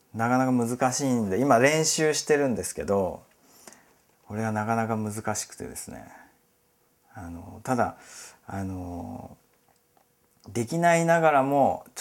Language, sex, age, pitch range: Japanese, male, 40-59, 95-145 Hz